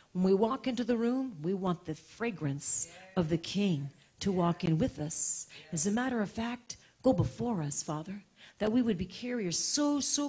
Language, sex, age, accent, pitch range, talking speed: English, female, 40-59, American, 160-230 Hz, 200 wpm